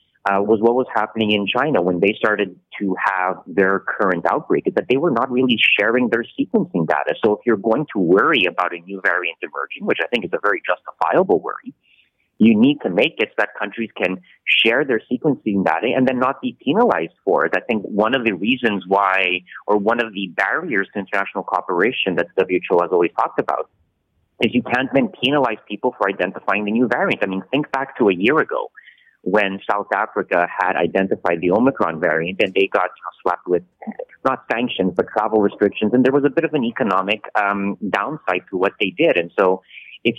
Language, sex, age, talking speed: English, male, 30-49, 210 wpm